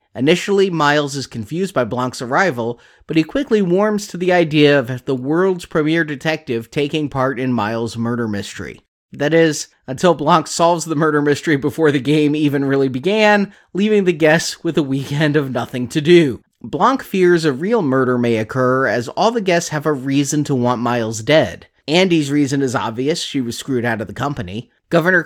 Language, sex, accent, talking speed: English, male, American, 190 wpm